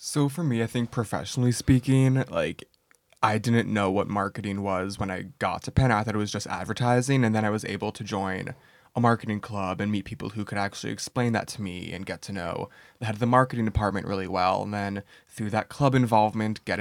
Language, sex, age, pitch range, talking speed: English, male, 20-39, 100-120 Hz, 230 wpm